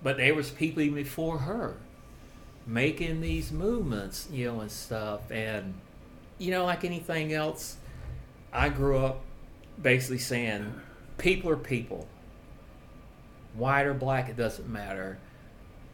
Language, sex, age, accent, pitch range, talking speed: English, male, 40-59, American, 110-140 Hz, 130 wpm